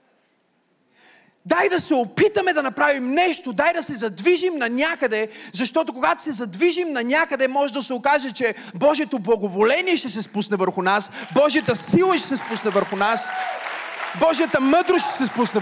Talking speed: 165 wpm